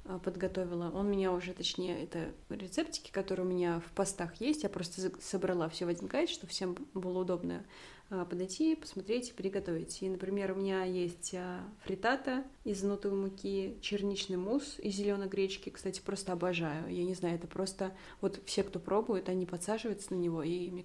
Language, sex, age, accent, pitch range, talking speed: Russian, female, 20-39, native, 175-195 Hz, 180 wpm